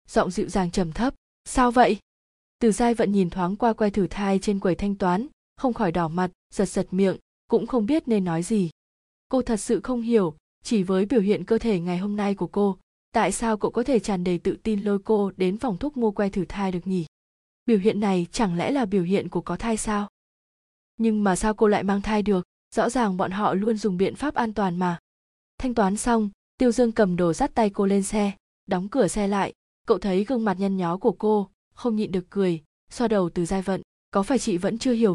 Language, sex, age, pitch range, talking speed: Vietnamese, female, 20-39, 190-225 Hz, 235 wpm